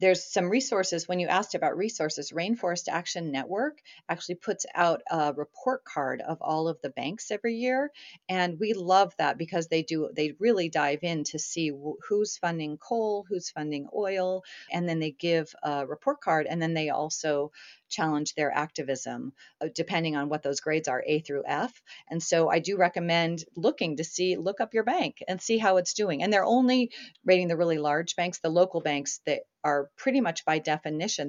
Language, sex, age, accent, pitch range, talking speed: English, female, 40-59, American, 155-205 Hz, 190 wpm